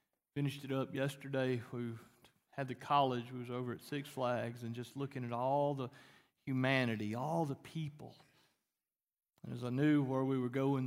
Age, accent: 40-59, American